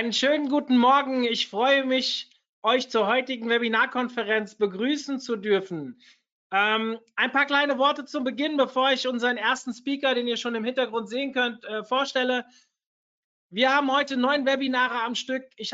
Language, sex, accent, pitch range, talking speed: German, male, German, 220-260 Hz, 165 wpm